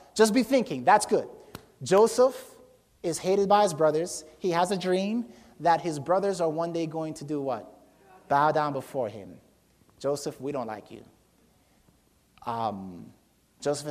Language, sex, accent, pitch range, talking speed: English, male, American, 140-180 Hz, 155 wpm